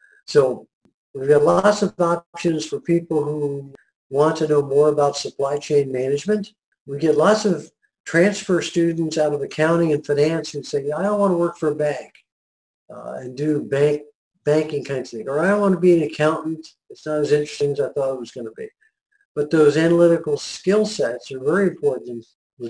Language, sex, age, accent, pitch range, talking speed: English, male, 50-69, American, 145-170 Hz, 200 wpm